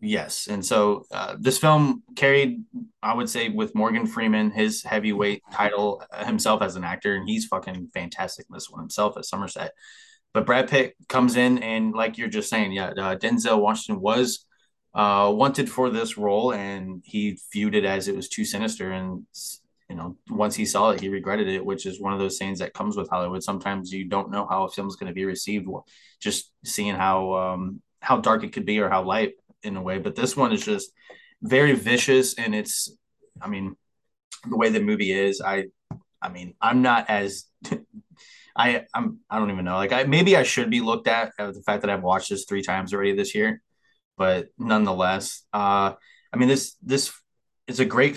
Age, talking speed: 20-39, 205 wpm